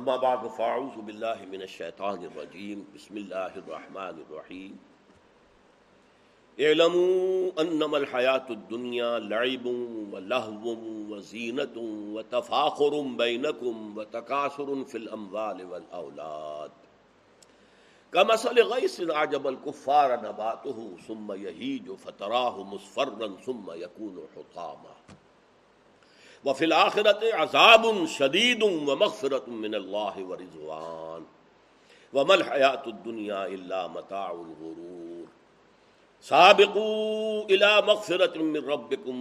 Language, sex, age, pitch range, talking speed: Urdu, male, 50-69, 110-150 Hz, 55 wpm